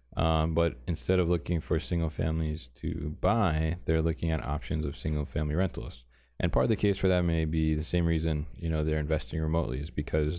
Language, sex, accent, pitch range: English, male, American, 75-85 Hz